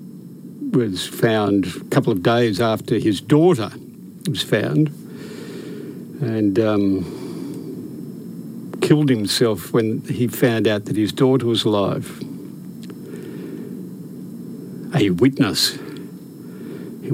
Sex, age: male, 60-79